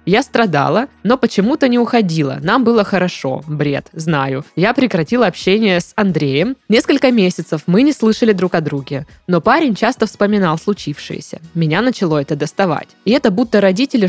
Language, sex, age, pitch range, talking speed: Russian, female, 20-39, 170-230 Hz, 160 wpm